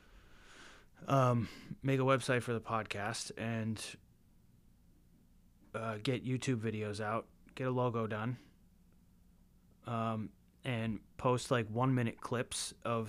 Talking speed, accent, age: 115 wpm, American, 20-39